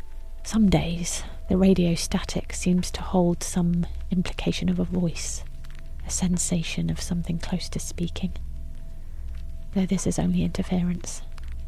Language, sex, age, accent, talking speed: English, female, 30-49, British, 130 wpm